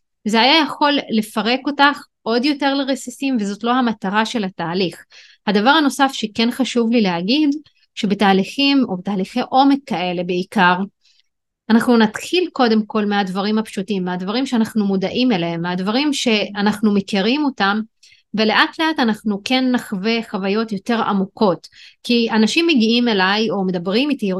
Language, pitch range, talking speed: Hebrew, 195-255 Hz, 135 wpm